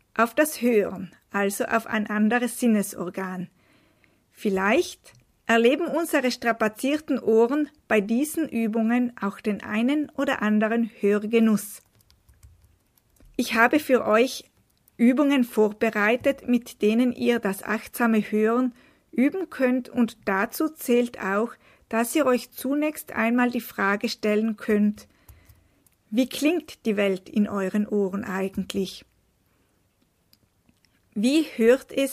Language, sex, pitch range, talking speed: German, female, 200-255 Hz, 110 wpm